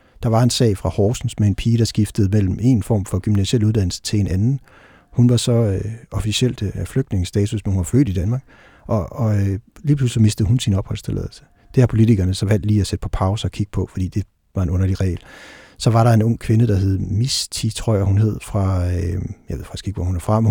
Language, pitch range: Danish, 100-120 Hz